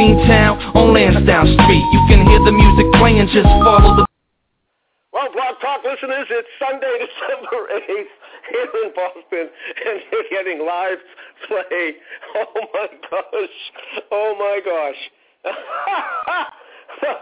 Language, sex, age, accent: English, male, 50-69, American